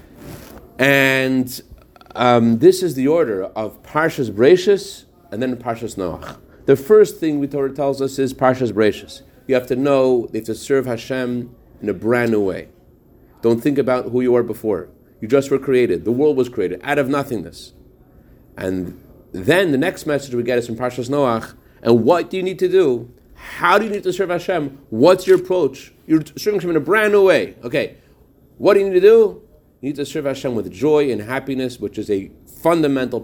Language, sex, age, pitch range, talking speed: English, male, 40-59, 115-150 Hz, 200 wpm